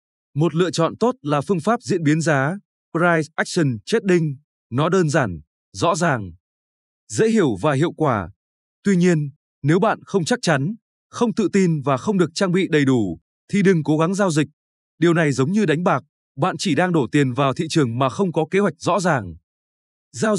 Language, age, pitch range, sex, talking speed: Vietnamese, 20-39, 135-190 Hz, male, 200 wpm